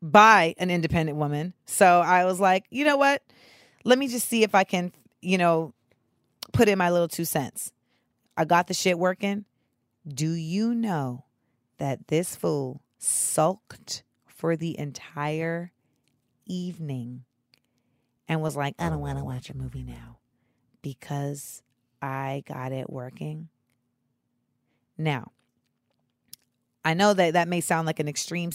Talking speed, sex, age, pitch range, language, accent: 145 wpm, female, 30-49, 140-190 Hz, English, American